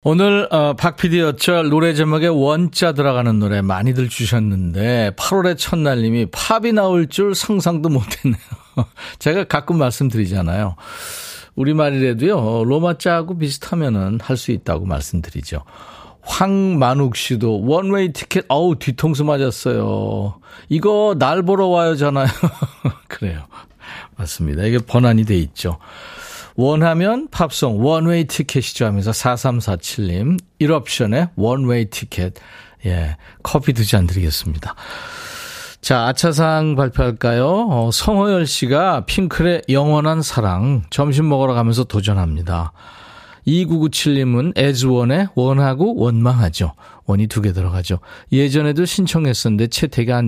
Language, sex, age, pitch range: Korean, male, 40-59, 110-165 Hz